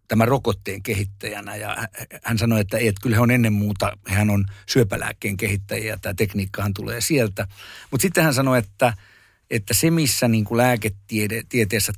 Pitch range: 105-125 Hz